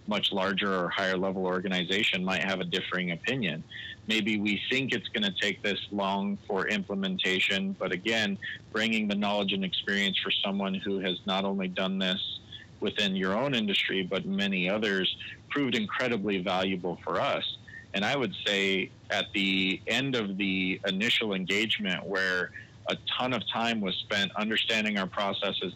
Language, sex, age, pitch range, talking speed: English, male, 40-59, 95-115 Hz, 165 wpm